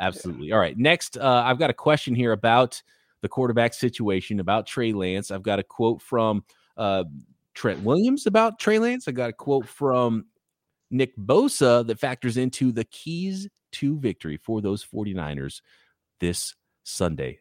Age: 30-49